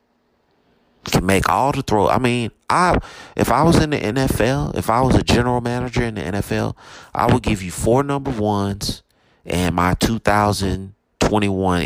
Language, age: English, 30-49